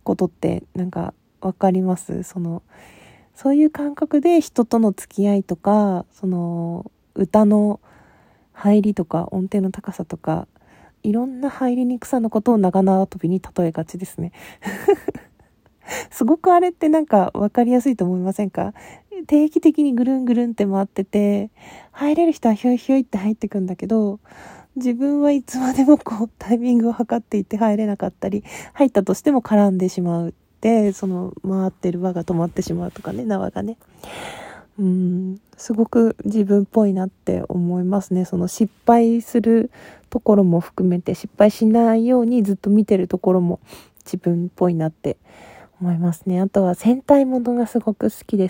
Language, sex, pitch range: Japanese, female, 185-240 Hz